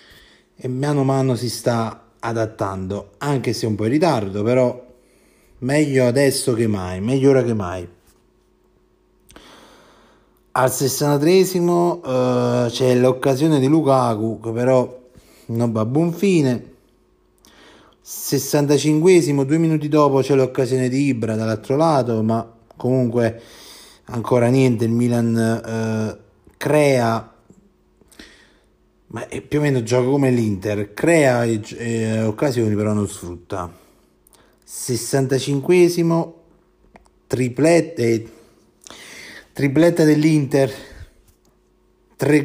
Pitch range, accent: 105-135 Hz, native